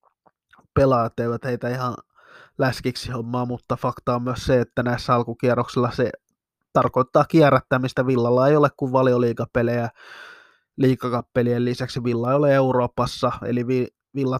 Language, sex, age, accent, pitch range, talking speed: Finnish, male, 20-39, native, 120-135 Hz, 120 wpm